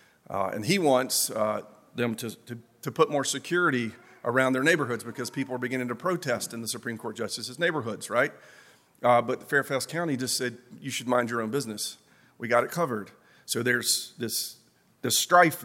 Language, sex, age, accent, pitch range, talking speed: English, male, 40-59, American, 120-150 Hz, 190 wpm